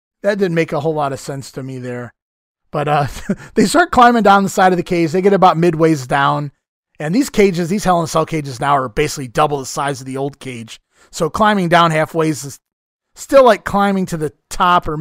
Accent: American